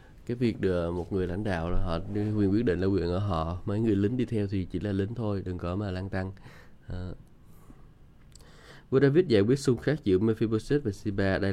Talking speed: 225 wpm